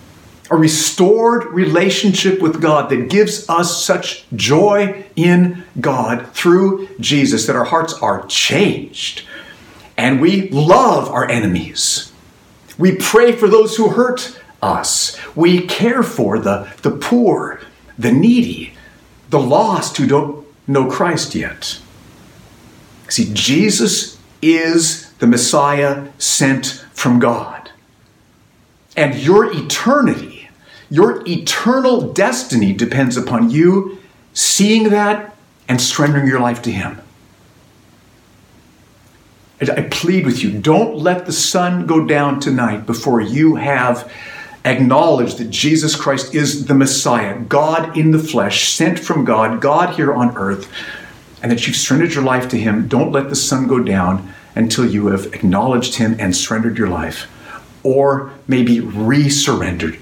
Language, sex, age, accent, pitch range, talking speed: English, male, 50-69, American, 120-180 Hz, 130 wpm